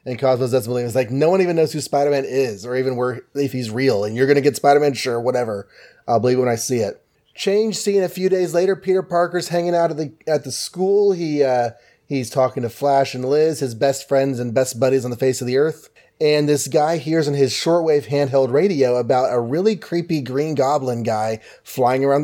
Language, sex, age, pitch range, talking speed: English, male, 30-49, 130-175 Hz, 235 wpm